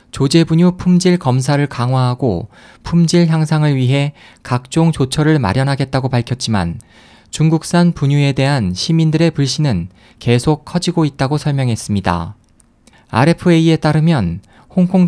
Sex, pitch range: male, 120-165 Hz